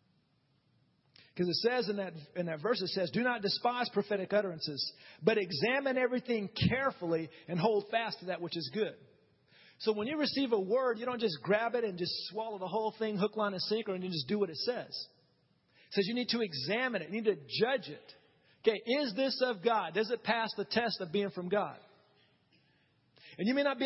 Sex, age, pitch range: male, 40-59, 175-225 Hz